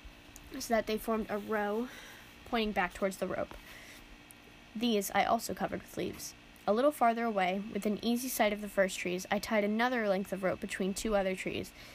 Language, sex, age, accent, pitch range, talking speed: English, female, 10-29, American, 185-220 Hz, 195 wpm